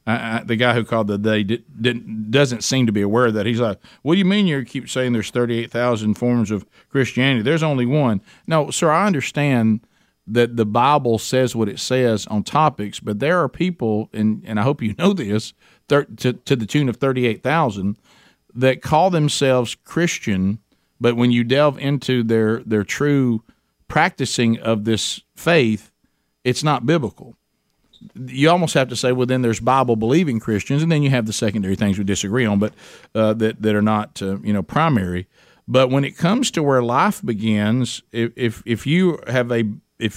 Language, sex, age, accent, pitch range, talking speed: English, male, 50-69, American, 105-130 Hz, 190 wpm